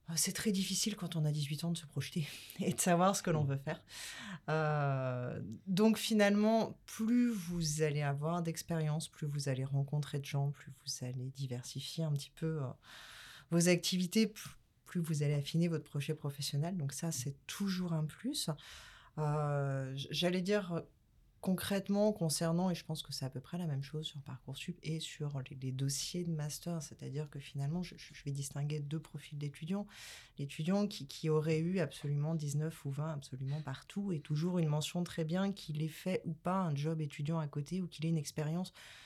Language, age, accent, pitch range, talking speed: French, 30-49, French, 140-175 Hz, 190 wpm